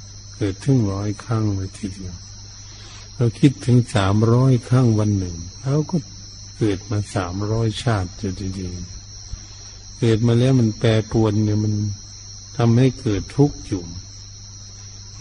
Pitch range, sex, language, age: 100-115 Hz, male, Thai, 60-79